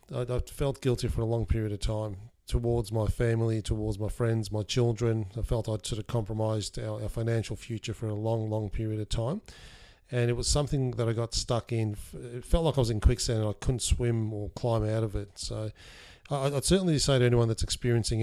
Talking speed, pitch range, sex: 220 wpm, 105-120 Hz, male